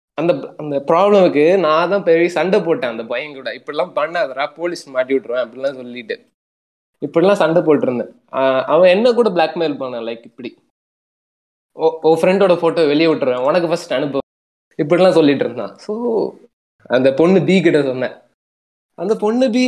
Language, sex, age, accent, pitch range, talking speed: Tamil, male, 20-39, native, 140-190 Hz, 145 wpm